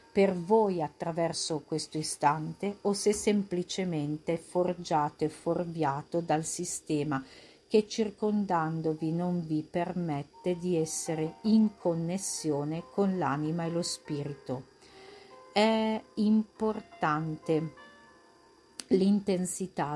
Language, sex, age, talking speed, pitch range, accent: Italian, female, 50-69, 90 wpm, 160-195 Hz, native